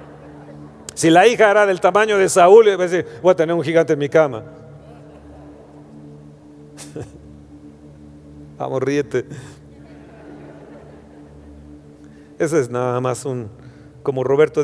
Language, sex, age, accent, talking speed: Spanish, male, 40-59, Mexican, 105 wpm